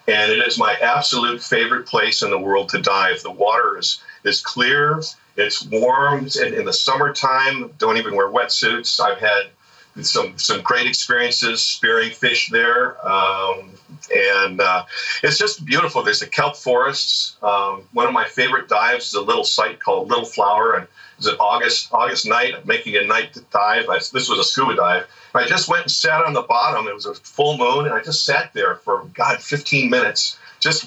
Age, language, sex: 50-69, English, male